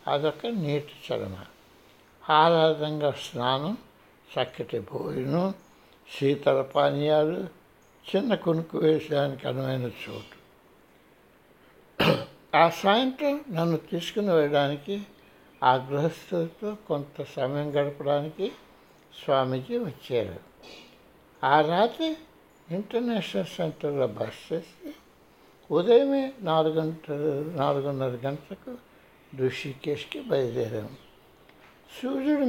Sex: male